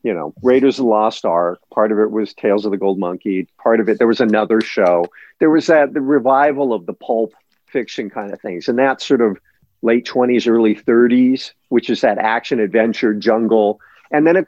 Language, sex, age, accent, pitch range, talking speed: English, male, 50-69, American, 100-125 Hz, 215 wpm